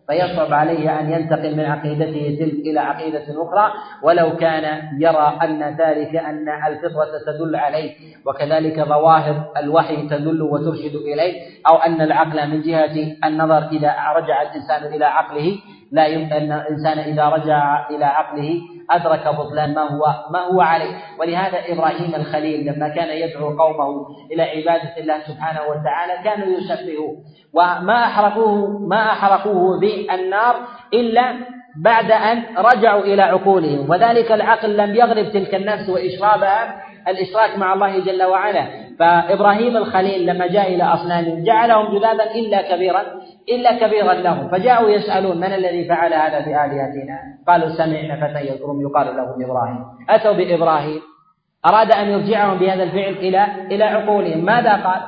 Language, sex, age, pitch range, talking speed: Arabic, male, 40-59, 155-195 Hz, 140 wpm